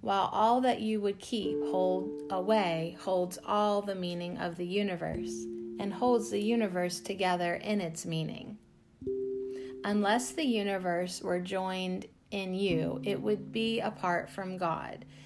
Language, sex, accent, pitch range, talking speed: English, female, American, 145-210 Hz, 140 wpm